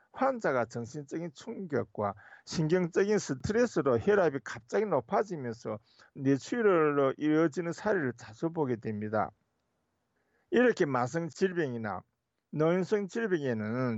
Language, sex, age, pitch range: Korean, male, 50-69, 120-185 Hz